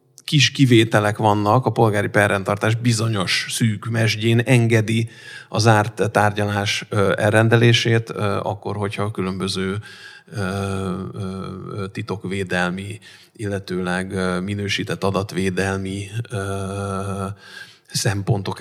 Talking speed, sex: 70 wpm, male